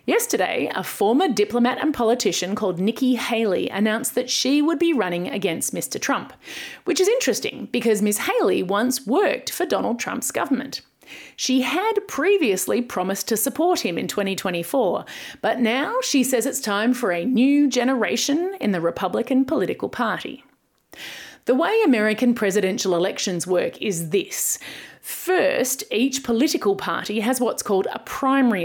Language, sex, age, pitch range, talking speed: English, female, 30-49, 200-270 Hz, 150 wpm